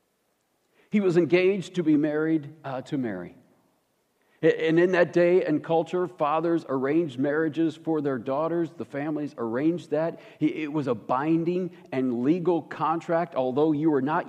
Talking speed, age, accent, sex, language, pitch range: 150 wpm, 50-69, American, male, English, 135-175 Hz